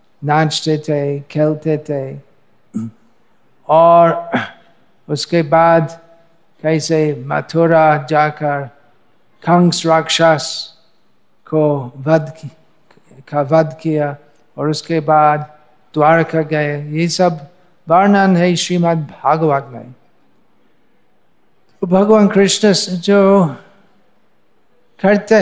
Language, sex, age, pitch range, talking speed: Hindi, male, 50-69, 150-180 Hz, 80 wpm